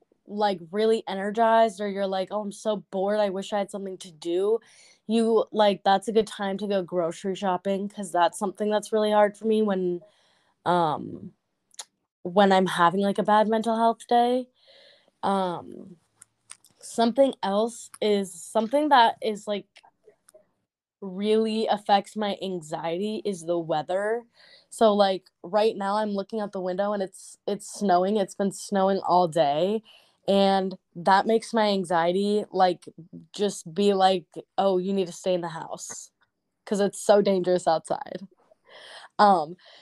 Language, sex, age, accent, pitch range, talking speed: English, female, 10-29, American, 185-220 Hz, 155 wpm